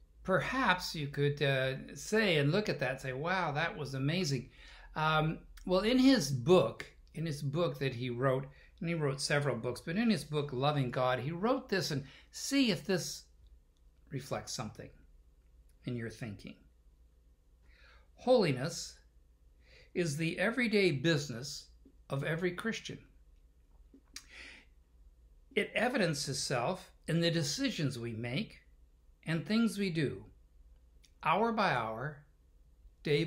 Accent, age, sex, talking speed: American, 60-79, male, 130 wpm